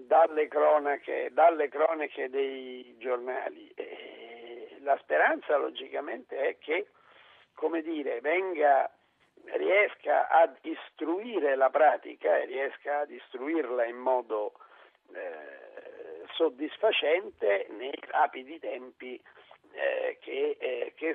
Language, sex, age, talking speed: Italian, male, 50-69, 100 wpm